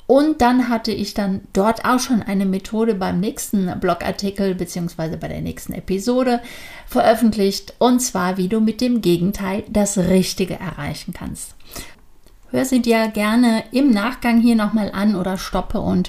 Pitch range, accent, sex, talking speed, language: 185-240 Hz, German, female, 155 wpm, German